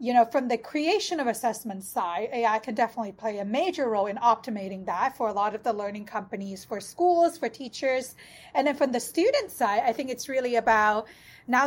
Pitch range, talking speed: 225-265 Hz, 210 wpm